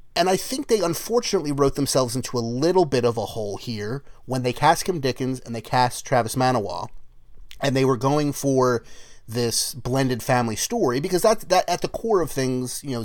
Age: 30-49